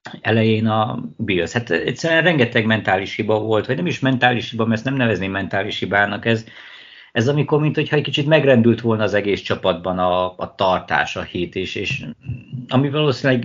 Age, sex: 50-69, male